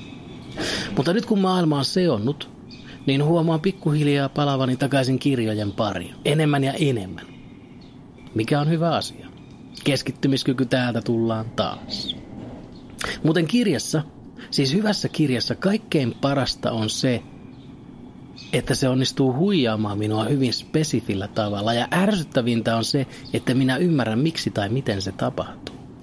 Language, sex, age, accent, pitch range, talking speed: Finnish, male, 30-49, native, 115-150 Hz, 120 wpm